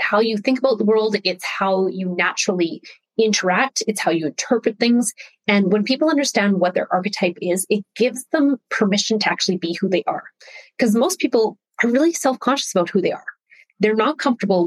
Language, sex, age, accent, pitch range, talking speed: English, female, 30-49, American, 185-240 Hz, 190 wpm